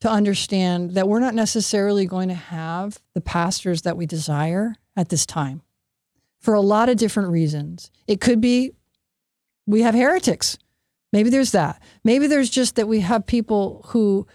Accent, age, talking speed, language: American, 50-69, 165 wpm, English